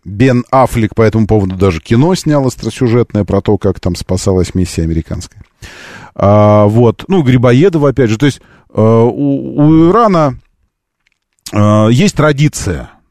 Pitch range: 100-135 Hz